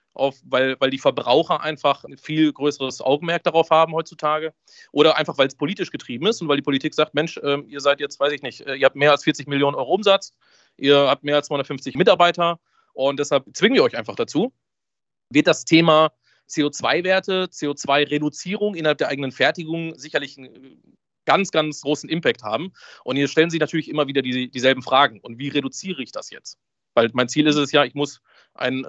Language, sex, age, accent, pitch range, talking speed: German, male, 30-49, German, 135-155 Hz, 200 wpm